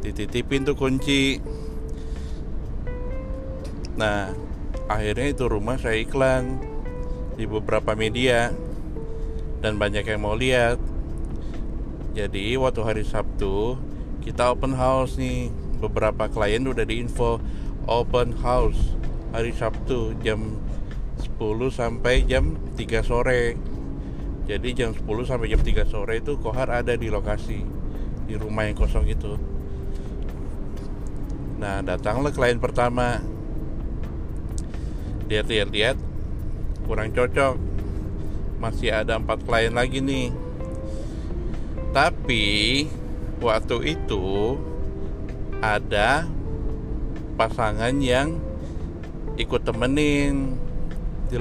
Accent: native